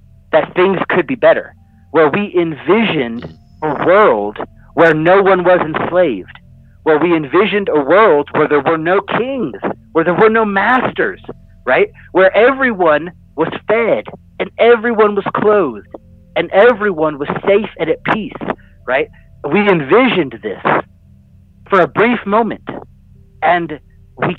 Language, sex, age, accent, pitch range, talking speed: English, male, 50-69, American, 130-200 Hz, 140 wpm